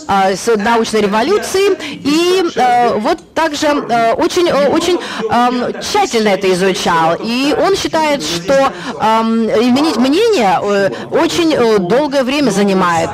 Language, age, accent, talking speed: Russian, 20-39, native, 100 wpm